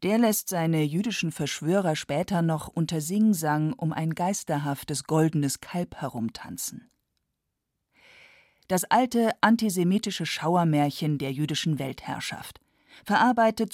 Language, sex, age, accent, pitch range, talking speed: German, female, 40-59, German, 145-190 Hz, 100 wpm